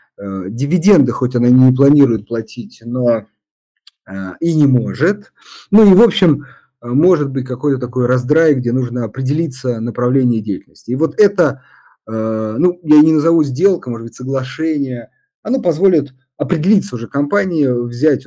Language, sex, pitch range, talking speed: Russian, male, 120-160 Hz, 140 wpm